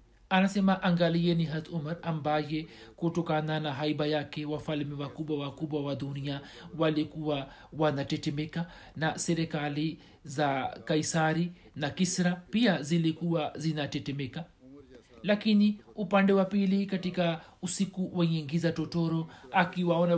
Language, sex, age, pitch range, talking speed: Swahili, male, 60-79, 150-170 Hz, 105 wpm